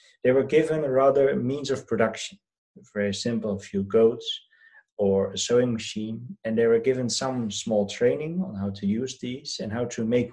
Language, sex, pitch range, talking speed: English, male, 105-140 Hz, 190 wpm